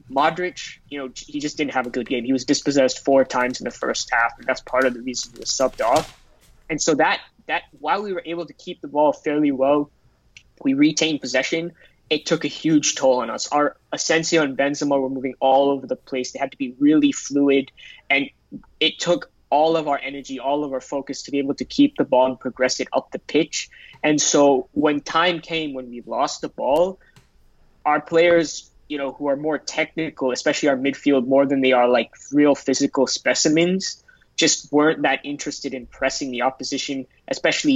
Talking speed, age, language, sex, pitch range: 210 wpm, 20-39, English, male, 130-160 Hz